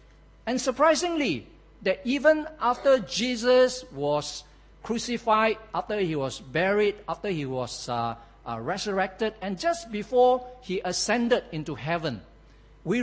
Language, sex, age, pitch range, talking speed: English, male, 50-69, 155-230 Hz, 120 wpm